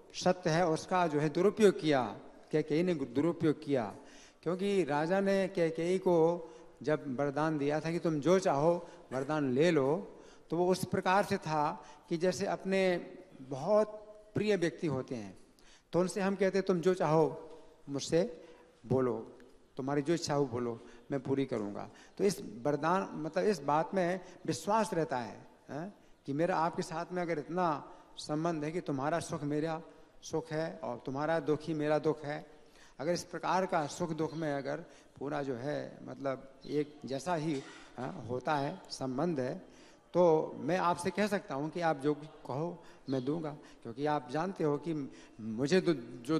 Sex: male